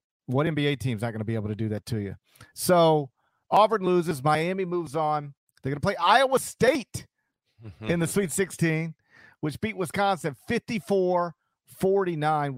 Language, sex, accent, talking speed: English, male, American, 155 wpm